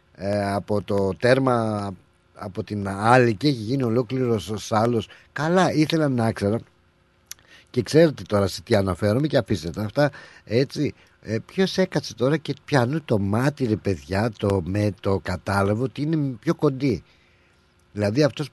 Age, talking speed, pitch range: 50-69, 145 wpm, 95-130 Hz